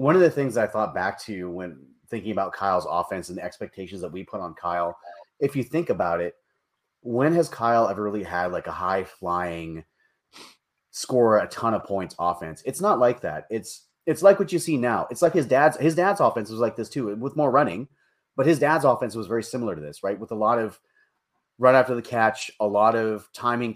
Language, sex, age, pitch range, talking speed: English, male, 30-49, 105-130 Hz, 220 wpm